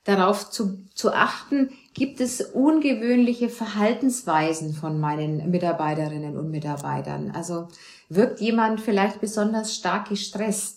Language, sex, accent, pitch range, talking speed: German, female, German, 180-240 Hz, 110 wpm